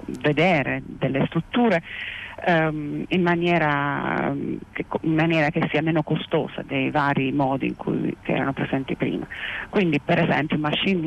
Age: 40-59